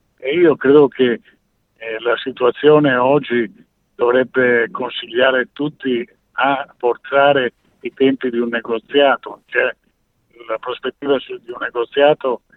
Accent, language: native, Italian